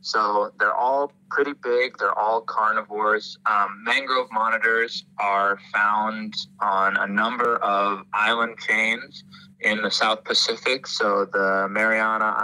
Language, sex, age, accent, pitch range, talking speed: English, male, 20-39, American, 100-130 Hz, 125 wpm